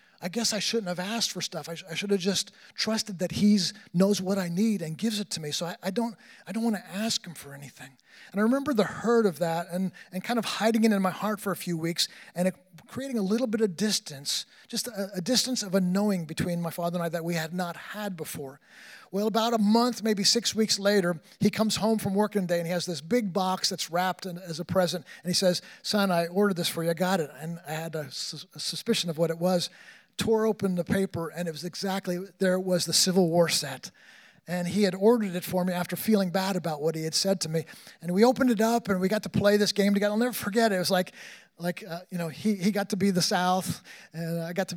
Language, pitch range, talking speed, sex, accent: English, 175-225 Hz, 270 wpm, male, American